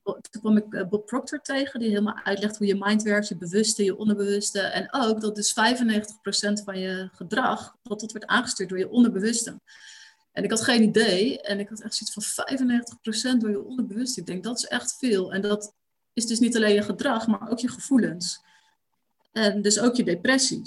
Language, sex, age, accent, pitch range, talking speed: Dutch, female, 30-49, Dutch, 200-230 Hz, 200 wpm